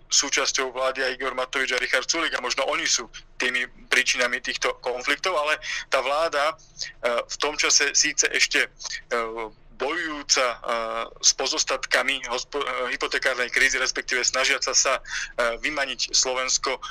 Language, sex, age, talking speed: Slovak, male, 30-49, 115 wpm